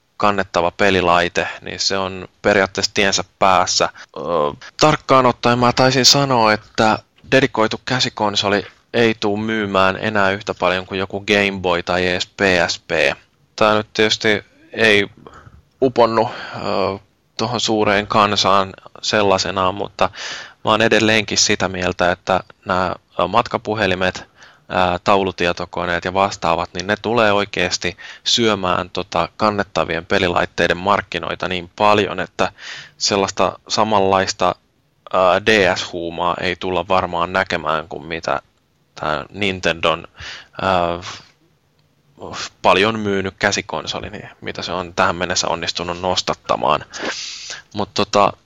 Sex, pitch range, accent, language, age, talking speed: male, 90-105 Hz, native, Finnish, 20-39, 110 wpm